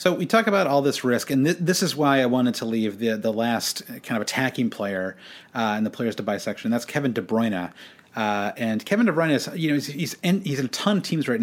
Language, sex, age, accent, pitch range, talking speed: English, male, 30-49, American, 105-140 Hz, 275 wpm